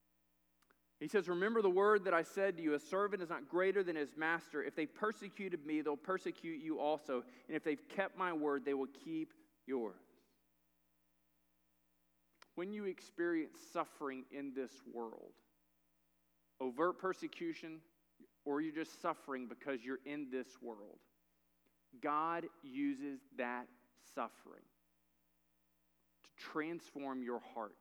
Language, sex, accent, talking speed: English, male, American, 135 wpm